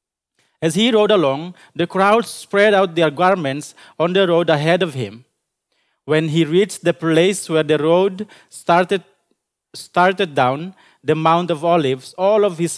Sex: male